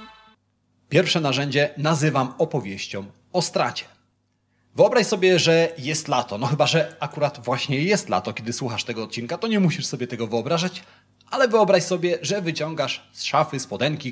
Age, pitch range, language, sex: 30-49, 120-175 Hz, Polish, male